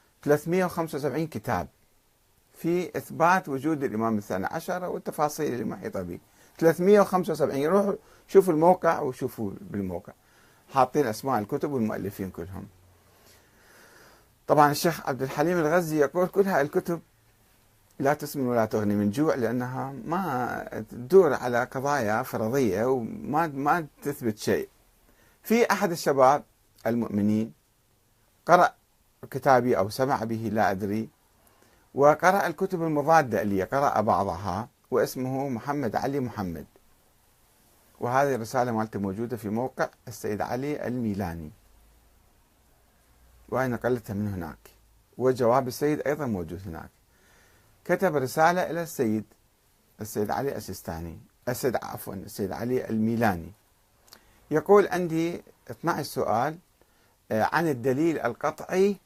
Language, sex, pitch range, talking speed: Arabic, male, 105-150 Hz, 105 wpm